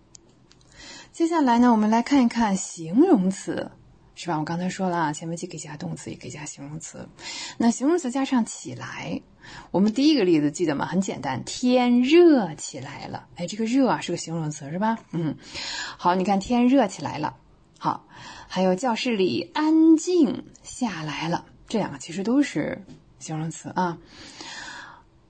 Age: 20-39